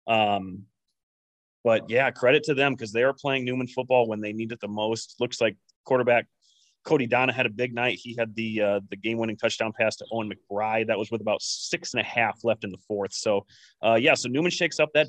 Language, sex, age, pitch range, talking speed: English, male, 30-49, 110-145 Hz, 235 wpm